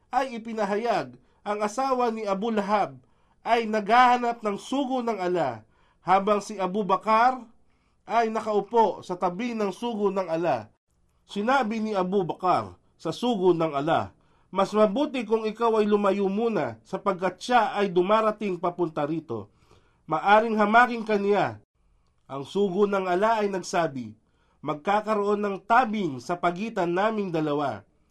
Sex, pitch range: male, 175-225 Hz